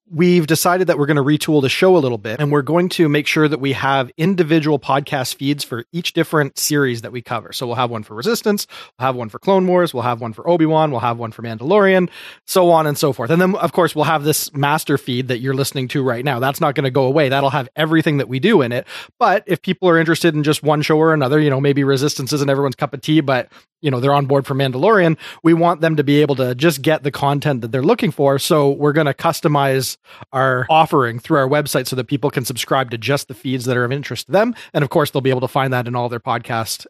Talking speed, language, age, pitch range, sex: 275 wpm, English, 30-49, 130-160 Hz, male